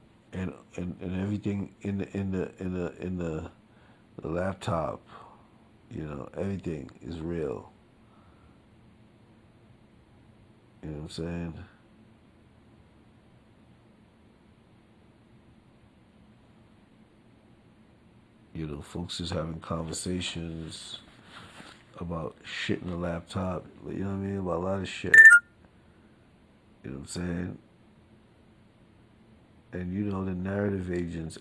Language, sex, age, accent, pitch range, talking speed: English, male, 60-79, American, 85-110 Hz, 105 wpm